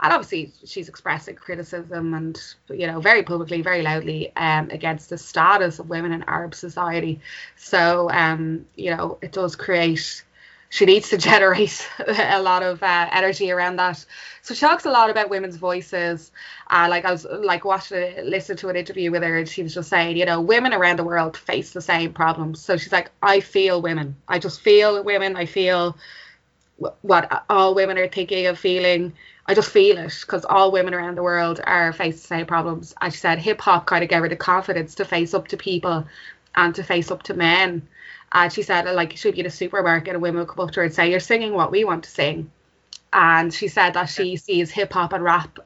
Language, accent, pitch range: English, Irish, 170-190 Hz